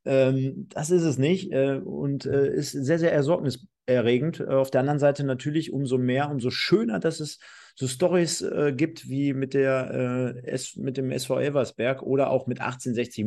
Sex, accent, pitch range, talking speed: male, German, 115-155 Hz, 155 wpm